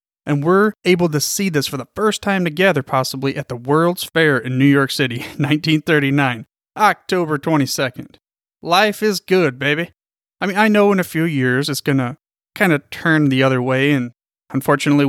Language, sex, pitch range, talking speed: English, male, 135-170 Hz, 185 wpm